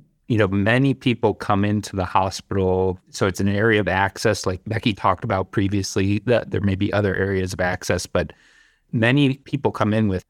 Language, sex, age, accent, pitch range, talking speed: English, male, 40-59, American, 95-110 Hz, 190 wpm